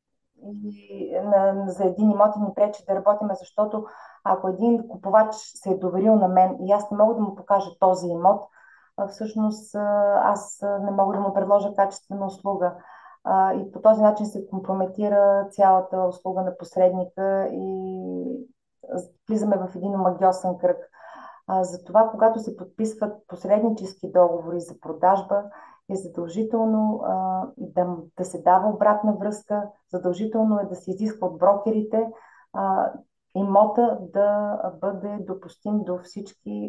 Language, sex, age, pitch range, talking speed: Bulgarian, female, 30-49, 180-205 Hz, 135 wpm